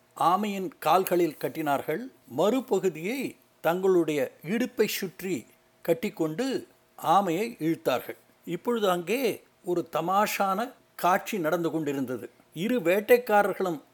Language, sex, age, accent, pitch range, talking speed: Tamil, male, 60-79, native, 165-215 Hz, 80 wpm